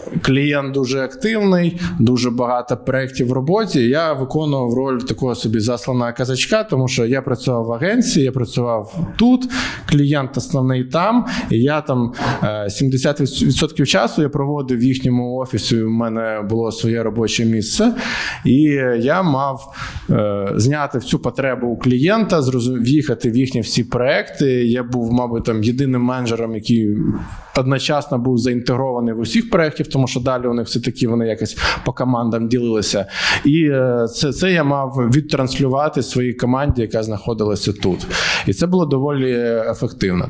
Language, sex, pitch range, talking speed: Ukrainian, male, 115-140 Hz, 140 wpm